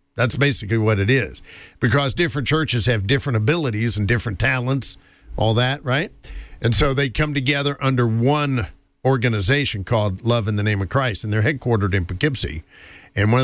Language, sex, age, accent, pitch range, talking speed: English, male, 50-69, American, 105-140 Hz, 175 wpm